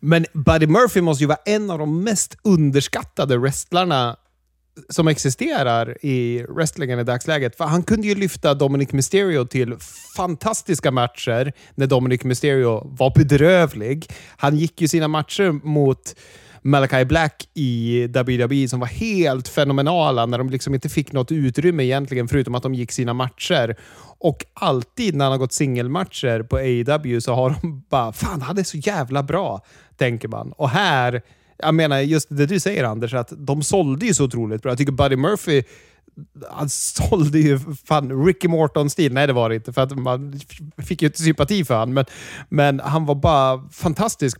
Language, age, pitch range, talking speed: Swedish, 30-49, 130-165 Hz, 170 wpm